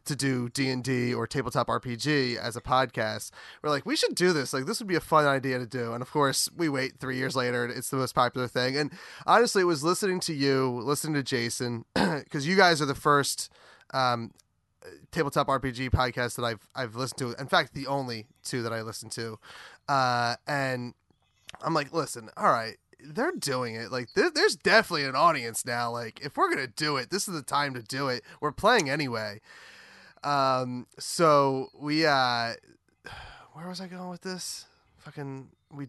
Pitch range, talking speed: 125-160 Hz, 200 wpm